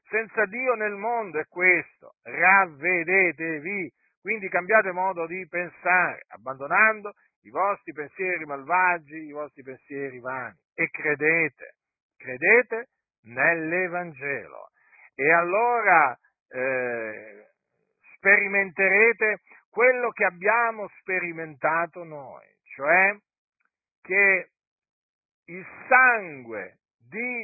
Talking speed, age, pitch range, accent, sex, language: 85 wpm, 50-69, 155-210 Hz, native, male, Italian